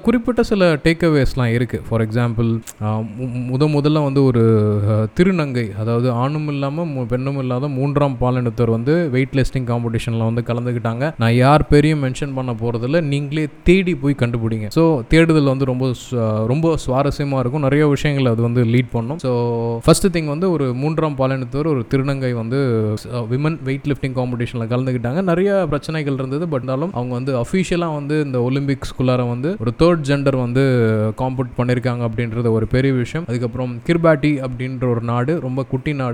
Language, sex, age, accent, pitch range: Tamil, male, 20-39, native, 120-145 Hz